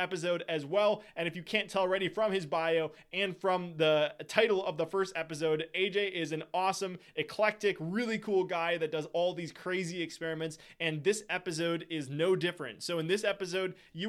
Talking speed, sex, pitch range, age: 190 wpm, male, 165-205 Hz, 20-39